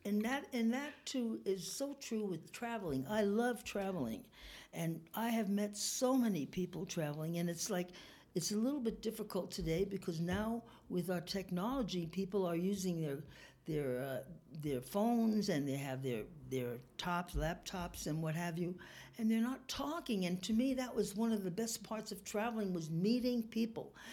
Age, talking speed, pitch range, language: 60-79, 180 wpm, 165-210 Hz, English